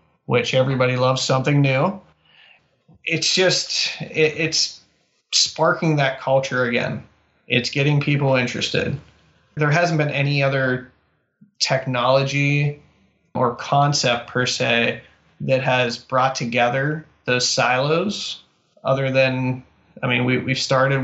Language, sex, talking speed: English, male, 110 wpm